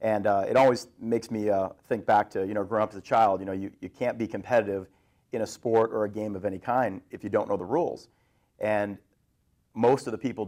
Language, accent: English, American